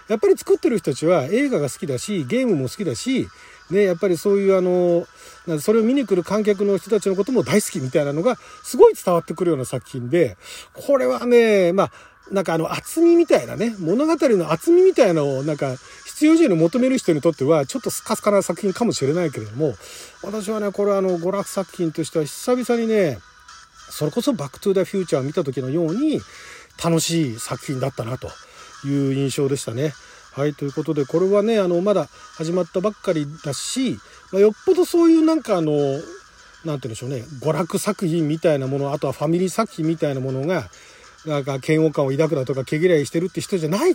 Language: Japanese